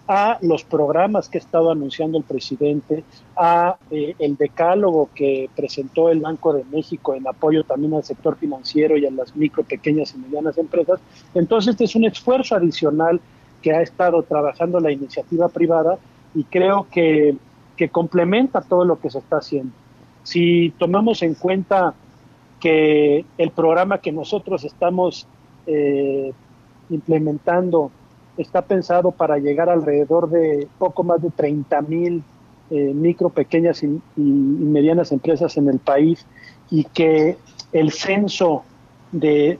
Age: 40-59